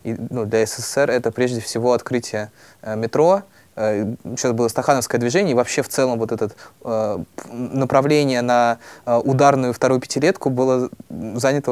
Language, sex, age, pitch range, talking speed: Russian, male, 20-39, 115-140 Hz, 150 wpm